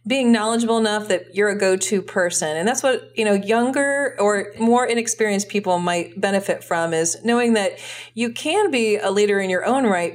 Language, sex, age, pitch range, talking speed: English, female, 40-59, 175-230 Hz, 195 wpm